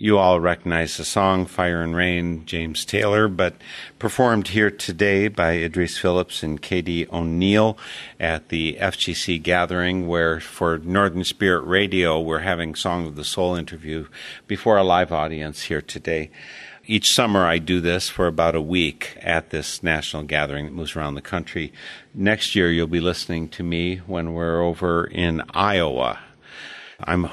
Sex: male